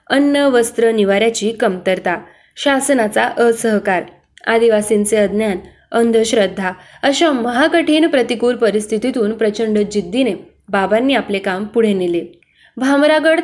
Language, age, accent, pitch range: Marathi, 20-39, native, 205-240 Hz